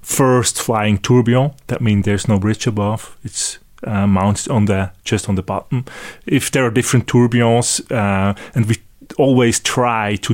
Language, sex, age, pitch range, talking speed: English, male, 30-49, 95-115 Hz, 170 wpm